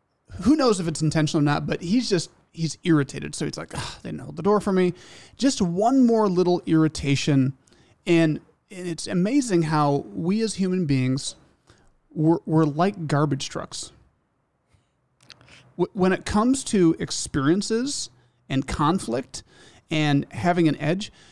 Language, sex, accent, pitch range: English, male, American, 150-195 Hz